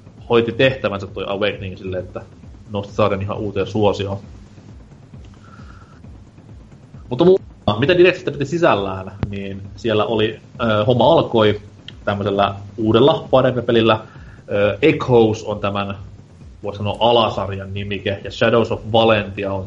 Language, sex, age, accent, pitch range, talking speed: Finnish, male, 30-49, native, 100-115 Hz, 115 wpm